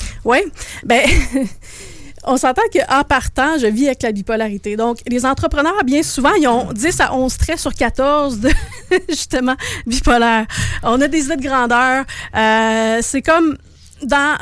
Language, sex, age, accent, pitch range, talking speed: French, female, 30-49, Canadian, 220-275 Hz, 155 wpm